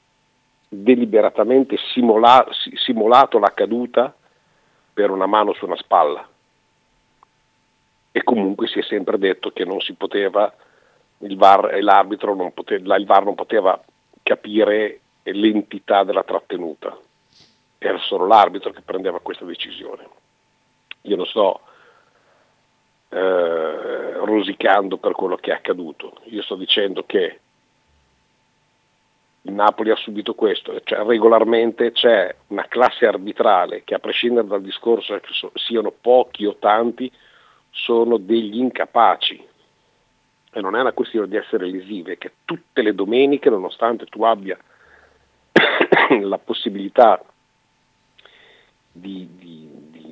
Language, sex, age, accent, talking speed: Italian, male, 50-69, native, 110 wpm